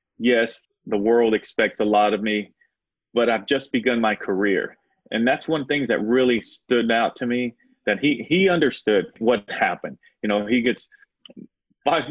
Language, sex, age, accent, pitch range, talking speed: English, male, 30-49, American, 110-130 Hz, 175 wpm